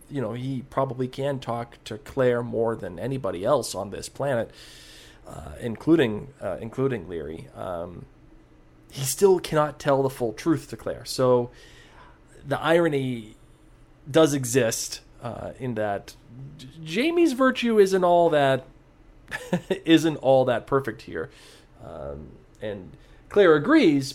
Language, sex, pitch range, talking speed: English, male, 115-150 Hz, 130 wpm